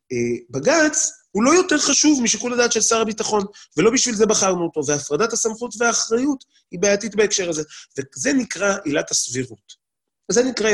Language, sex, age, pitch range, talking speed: Hebrew, male, 30-49, 130-200 Hz, 155 wpm